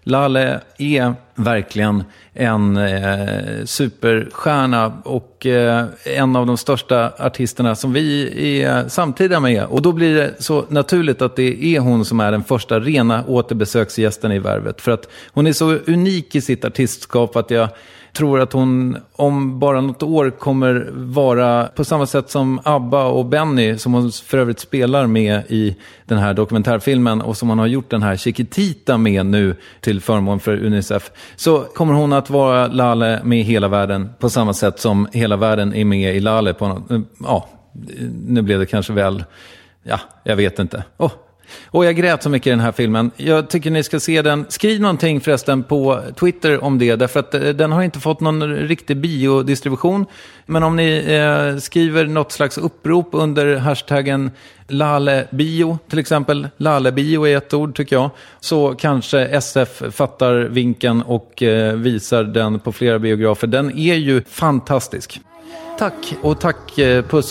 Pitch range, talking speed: 110-145 Hz, 170 wpm